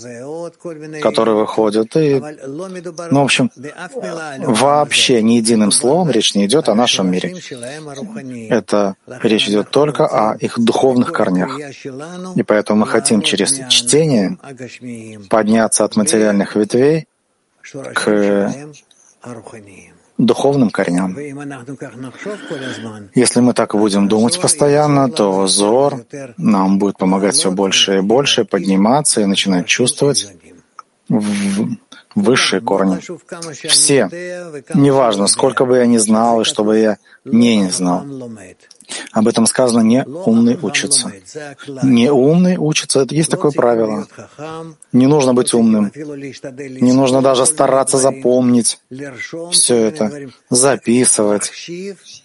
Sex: male